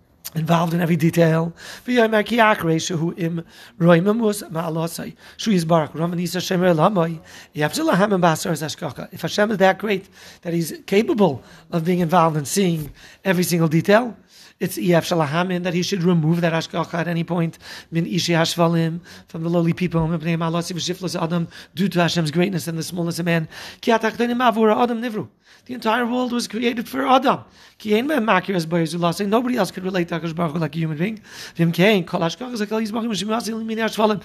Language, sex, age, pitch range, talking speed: English, male, 40-59, 165-210 Hz, 115 wpm